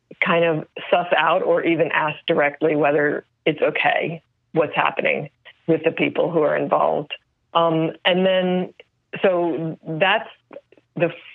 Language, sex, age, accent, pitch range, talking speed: English, female, 40-59, American, 155-180 Hz, 130 wpm